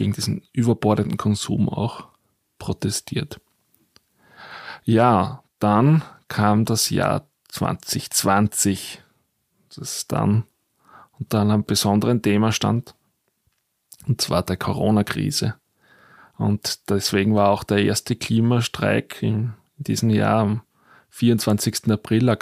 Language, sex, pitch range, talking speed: German, male, 105-120 Hz, 100 wpm